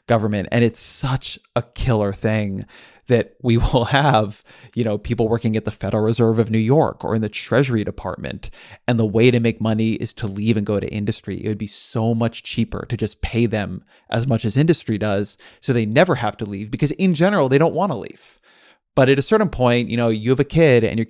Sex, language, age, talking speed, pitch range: male, English, 20-39, 235 wpm, 110-125 Hz